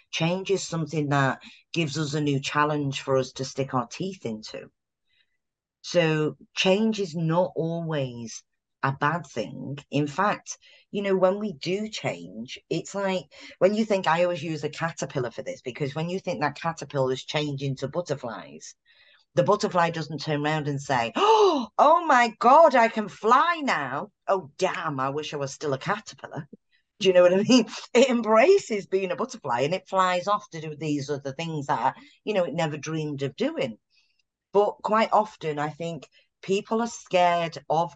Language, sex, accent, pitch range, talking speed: English, female, British, 140-185 Hz, 180 wpm